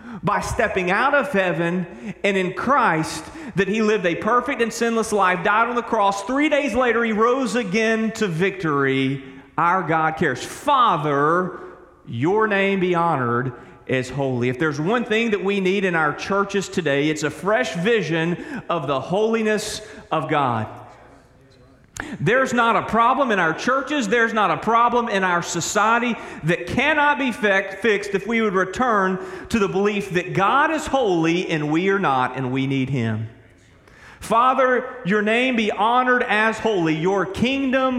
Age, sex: 40-59, male